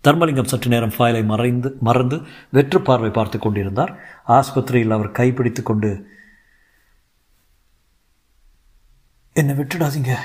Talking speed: 90 wpm